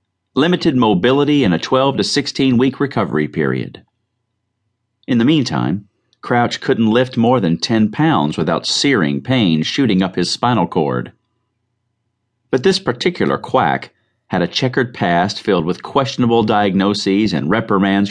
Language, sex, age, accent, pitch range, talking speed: English, male, 40-59, American, 90-120 Hz, 135 wpm